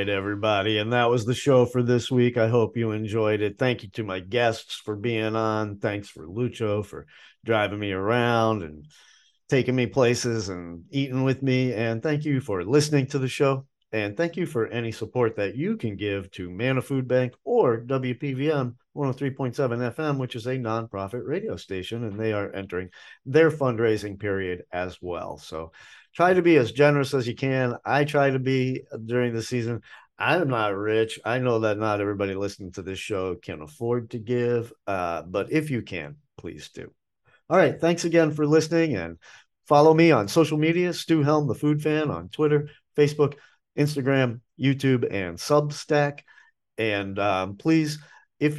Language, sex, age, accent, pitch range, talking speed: English, male, 50-69, American, 105-140 Hz, 180 wpm